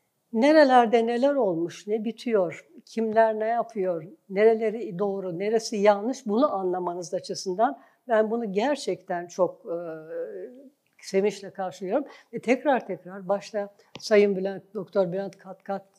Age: 60-79